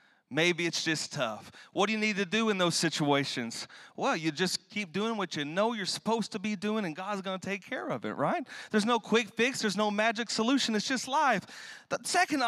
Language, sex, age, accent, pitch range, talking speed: English, male, 30-49, American, 180-275 Hz, 230 wpm